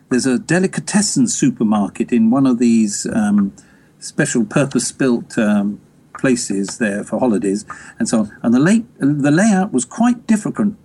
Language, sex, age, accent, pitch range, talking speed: English, male, 50-69, British, 125-200 Hz, 140 wpm